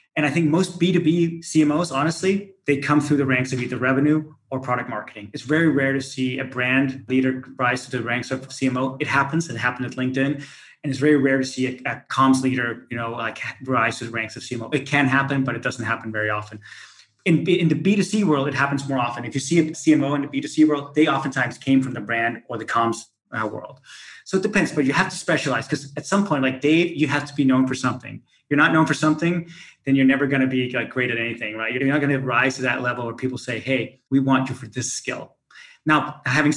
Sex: male